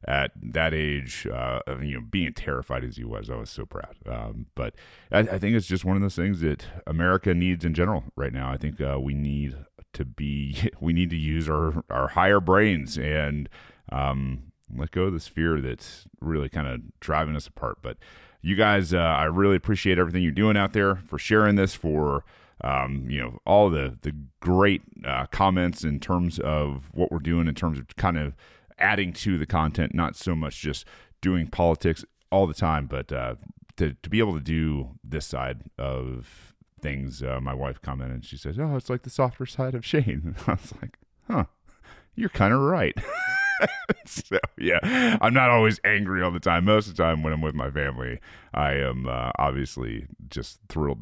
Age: 30-49